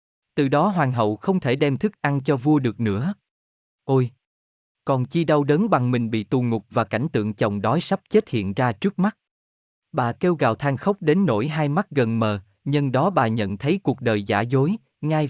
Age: 20-39